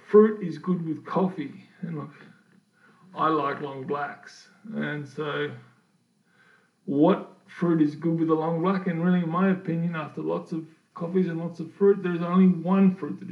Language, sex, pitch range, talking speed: English, male, 155-190 Hz, 175 wpm